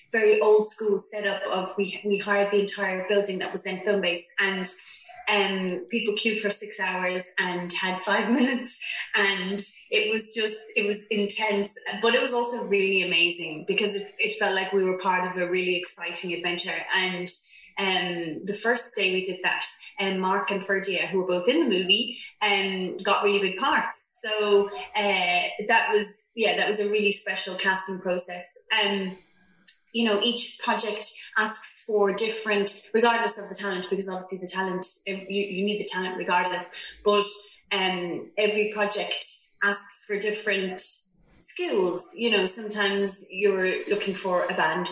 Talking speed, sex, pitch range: 175 wpm, female, 185-210 Hz